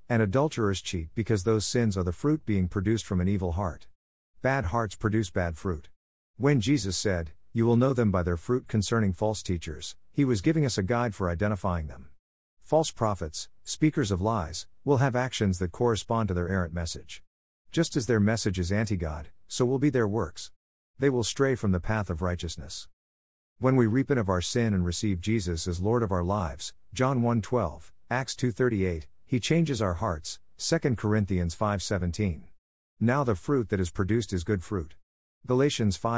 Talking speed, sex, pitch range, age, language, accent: 180 wpm, male, 90-120 Hz, 50-69, English, American